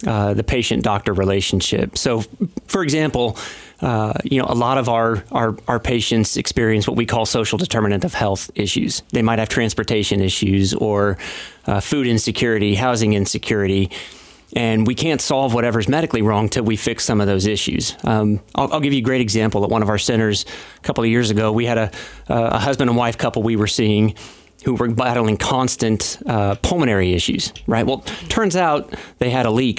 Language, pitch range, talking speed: English, 110-125 Hz, 190 wpm